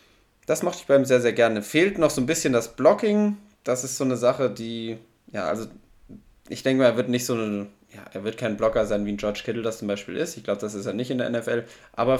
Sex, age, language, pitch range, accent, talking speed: male, 10-29, German, 105-125 Hz, German, 270 wpm